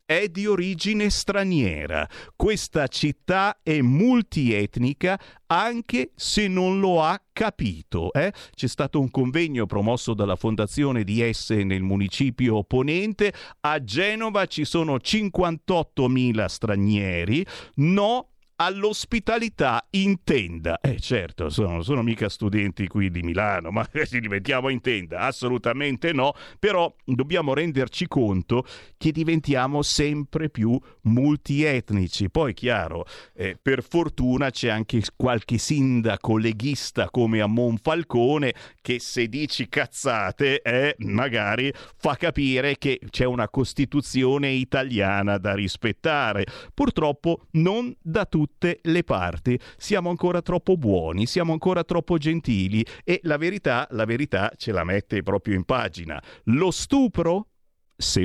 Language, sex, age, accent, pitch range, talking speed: Italian, male, 50-69, native, 105-160 Hz, 125 wpm